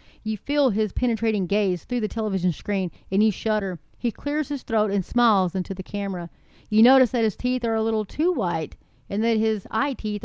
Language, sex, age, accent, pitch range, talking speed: English, female, 30-49, American, 205-255 Hz, 210 wpm